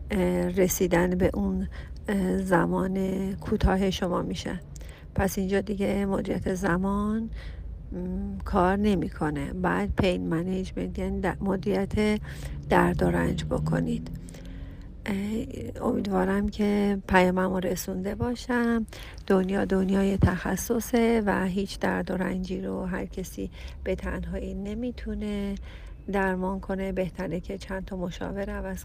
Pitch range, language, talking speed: 175-200 Hz, Persian, 105 wpm